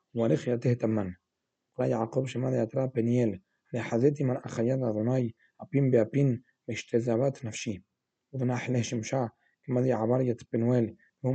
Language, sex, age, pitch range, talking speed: Hebrew, male, 40-59, 110-125 Hz, 120 wpm